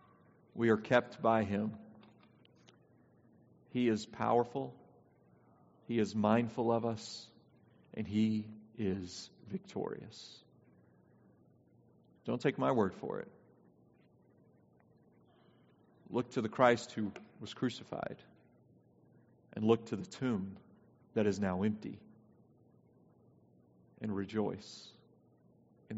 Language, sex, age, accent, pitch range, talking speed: English, male, 40-59, American, 105-115 Hz, 95 wpm